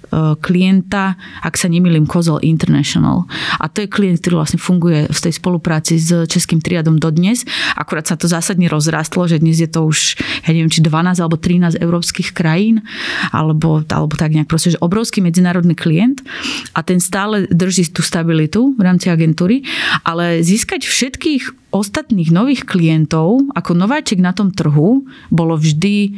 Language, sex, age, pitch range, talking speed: Slovak, female, 30-49, 165-200 Hz, 160 wpm